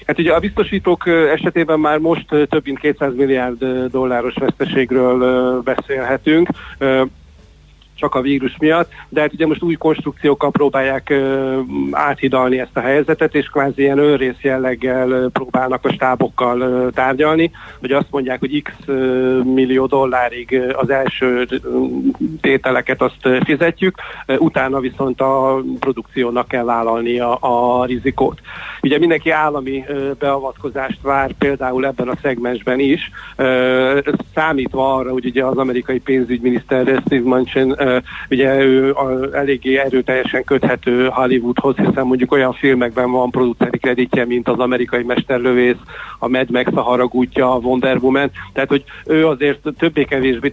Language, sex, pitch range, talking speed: Hungarian, male, 125-140 Hz, 135 wpm